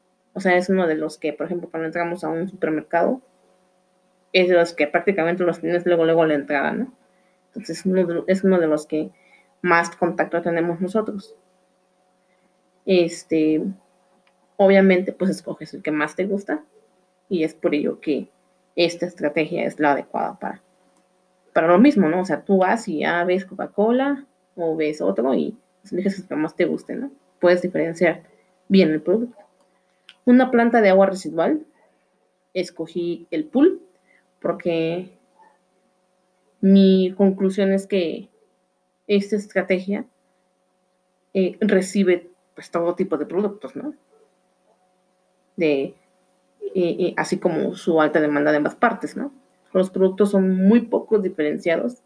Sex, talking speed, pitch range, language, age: female, 150 wpm, 170-195 Hz, English, 20-39